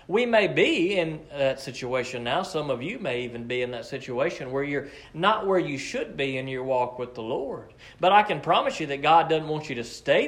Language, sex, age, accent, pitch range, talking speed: English, male, 40-59, American, 130-200 Hz, 240 wpm